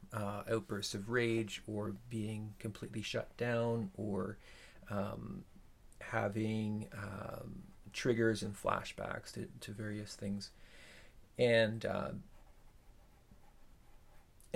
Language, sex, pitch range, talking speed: English, male, 105-115 Hz, 90 wpm